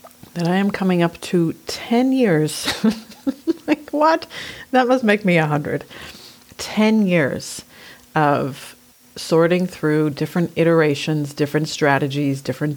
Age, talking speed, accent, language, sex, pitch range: 40-59, 120 wpm, American, English, female, 145-180 Hz